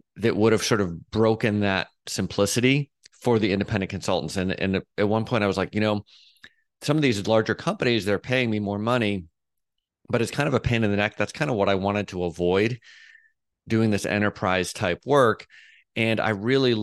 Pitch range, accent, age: 100-120 Hz, American, 30-49